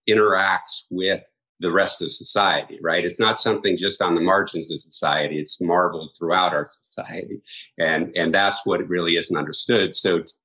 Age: 50-69